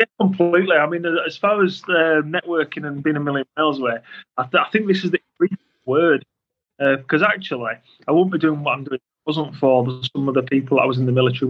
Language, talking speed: English, 245 wpm